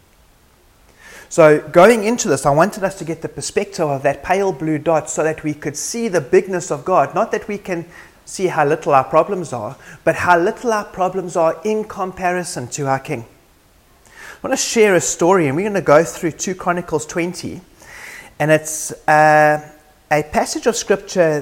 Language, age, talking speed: English, 30-49, 190 wpm